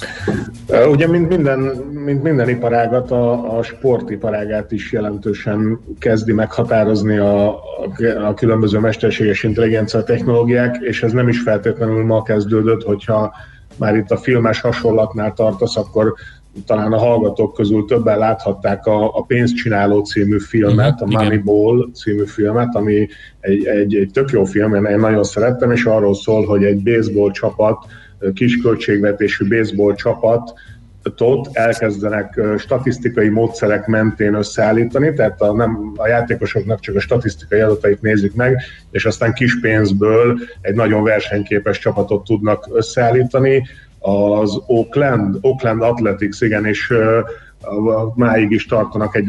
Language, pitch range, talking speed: Hungarian, 105-115 Hz, 130 wpm